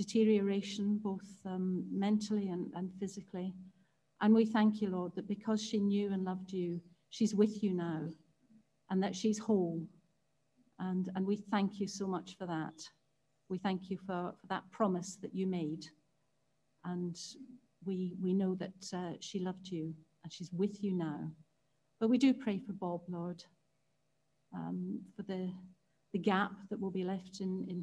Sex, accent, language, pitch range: female, British, English, 170-205 Hz